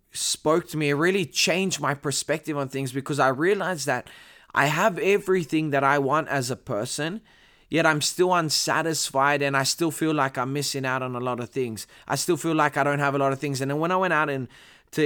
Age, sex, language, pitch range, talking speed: 20-39, male, English, 140-170 Hz, 235 wpm